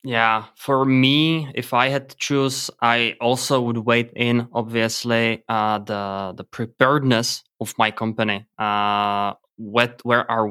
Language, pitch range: English, 110-125 Hz